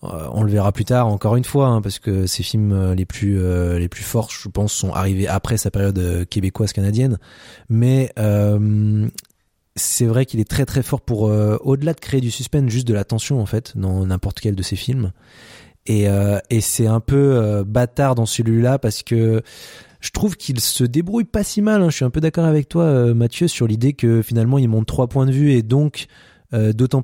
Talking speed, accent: 225 wpm, French